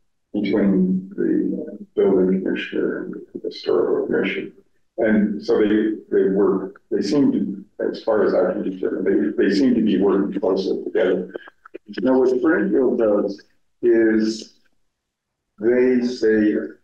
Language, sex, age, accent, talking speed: English, male, 50-69, American, 135 wpm